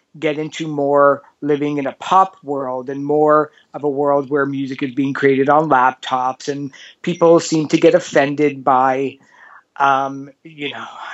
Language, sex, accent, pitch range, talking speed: English, male, American, 130-160 Hz, 160 wpm